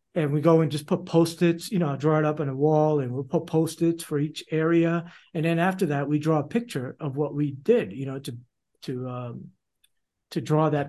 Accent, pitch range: American, 140-170 Hz